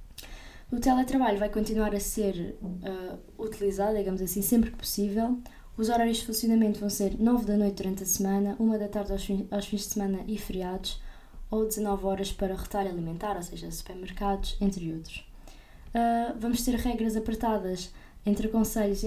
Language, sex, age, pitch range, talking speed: Portuguese, female, 20-39, 190-220 Hz, 170 wpm